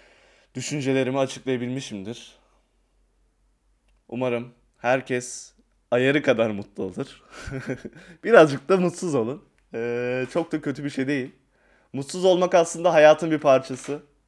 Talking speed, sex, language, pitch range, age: 105 wpm, male, Turkish, 115-145 Hz, 30-49